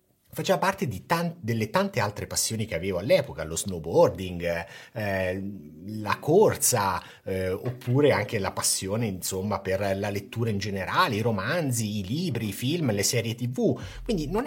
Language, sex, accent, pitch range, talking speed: Italian, male, native, 90-120 Hz, 160 wpm